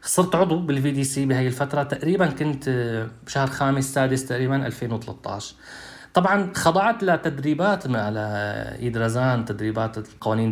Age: 20-39